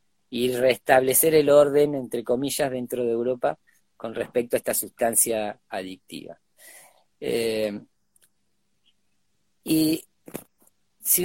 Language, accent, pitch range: Spanish, Argentinian, 125-160 Hz